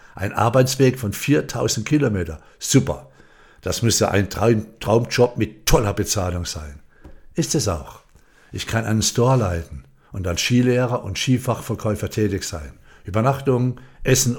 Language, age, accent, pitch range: German, 60-79, German, 95-125 Hz